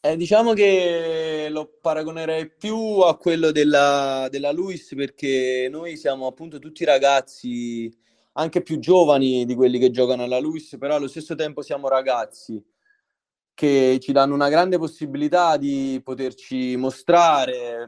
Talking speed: 135 wpm